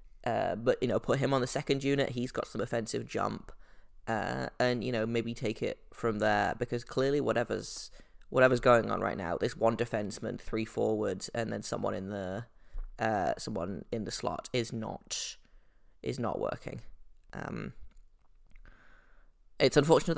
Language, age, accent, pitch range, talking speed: English, 20-39, British, 110-130 Hz, 165 wpm